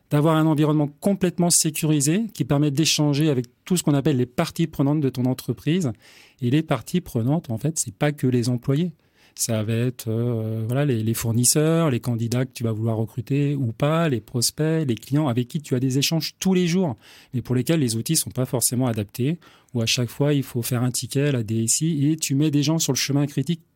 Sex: male